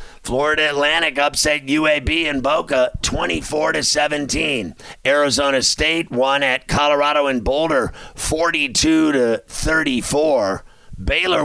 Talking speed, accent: 90 wpm, American